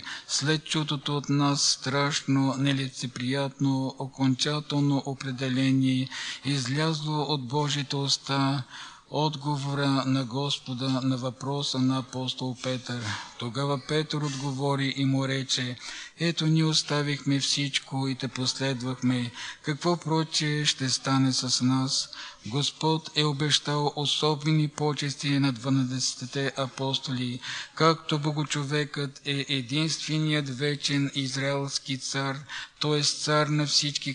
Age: 50-69